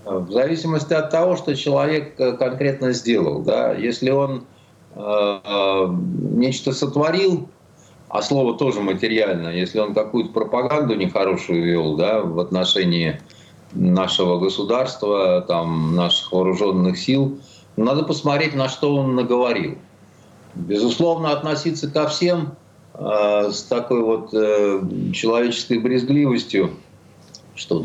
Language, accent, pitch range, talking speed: Russian, native, 100-145 Hz, 110 wpm